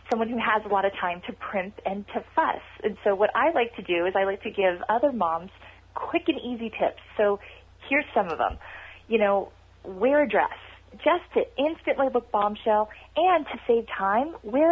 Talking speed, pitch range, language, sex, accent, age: 205 wpm, 205-295 Hz, English, female, American, 30-49